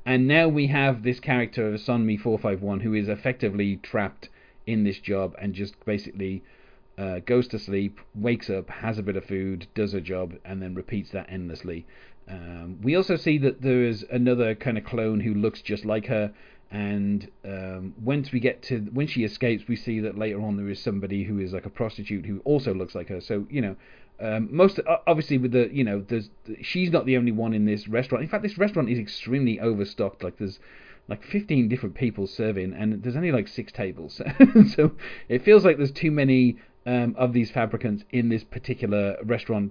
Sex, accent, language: male, British, English